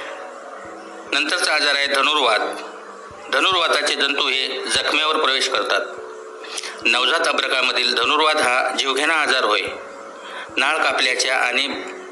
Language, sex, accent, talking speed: Marathi, male, native, 90 wpm